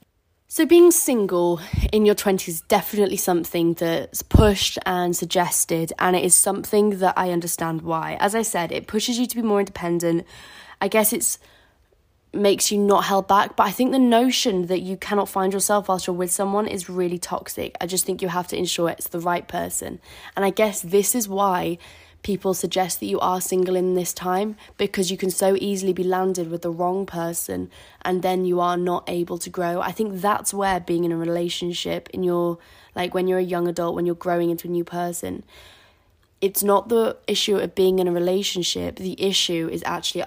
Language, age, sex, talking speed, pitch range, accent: English, 20-39, female, 205 wpm, 170-195 Hz, British